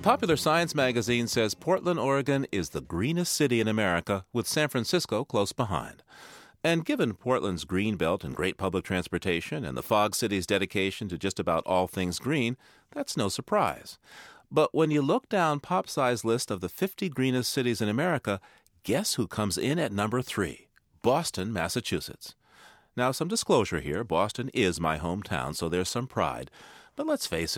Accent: American